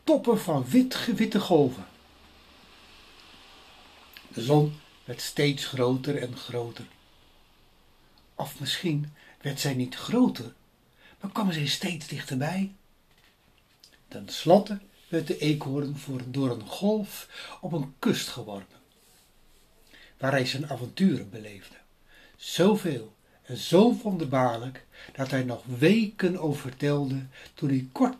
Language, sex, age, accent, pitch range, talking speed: Dutch, male, 60-79, Dutch, 125-180 Hz, 110 wpm